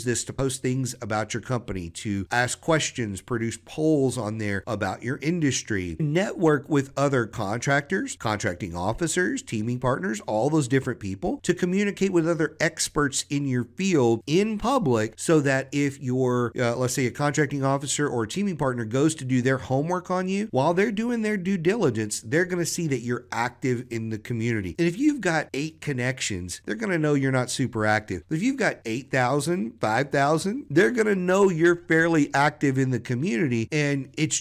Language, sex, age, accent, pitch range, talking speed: English, male, 50-69, American, 115-155 Hz, 190 wpm